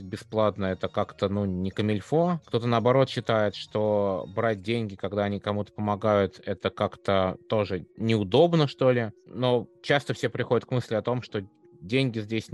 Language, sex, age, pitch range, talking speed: Russian, male, 20-39, 95-115 Hz, 160 wpm